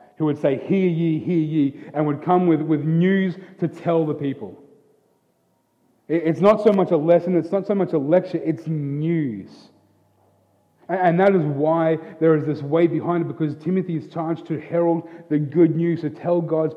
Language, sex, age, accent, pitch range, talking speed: English, male, 30-49, Australian, 150-175 Hz, 185 wpm